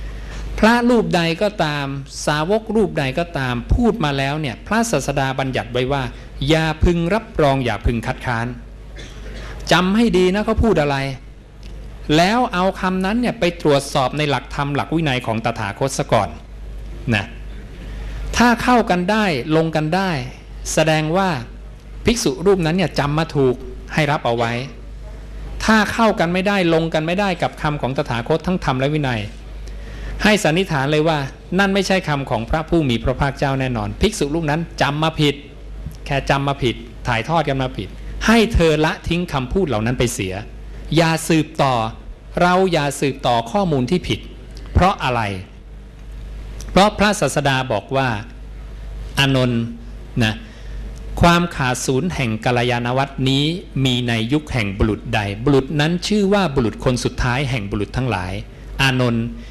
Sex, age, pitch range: male, 60-79, 120-170 Hz